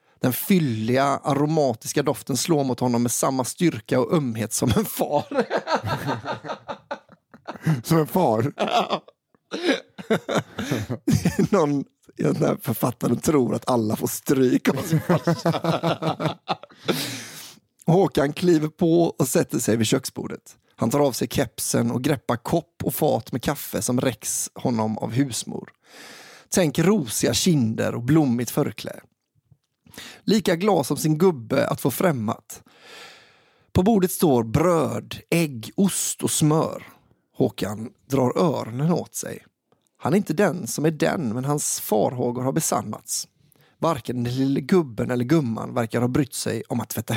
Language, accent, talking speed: English, Swedish, 135 wpm